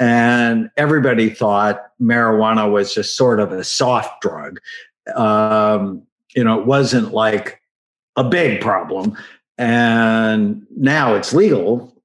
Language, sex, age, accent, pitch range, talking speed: English, male, 50-69, American, 110-155 Hz, 120 wpm